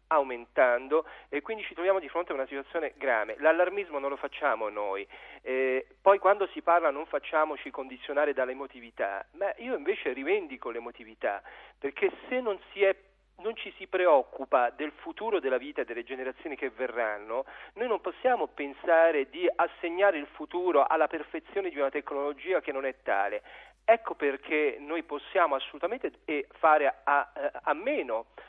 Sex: male